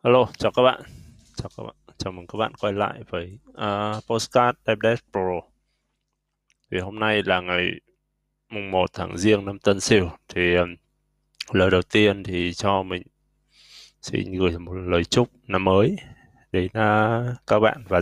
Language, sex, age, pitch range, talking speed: Vietnamese, male, 20-39, 90-110 Hz, 165 wpm